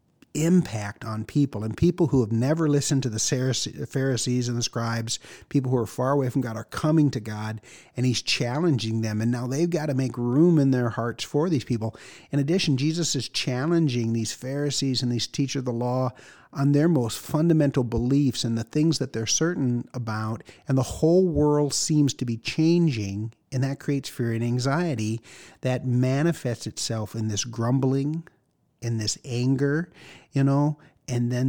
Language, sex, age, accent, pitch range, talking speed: English, male, 50-69, American, 115-145 Hz, 180 wpm